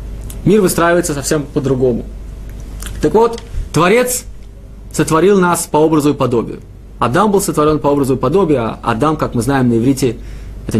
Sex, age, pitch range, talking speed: male, 30-49, 115-175 Hz, 155 wpm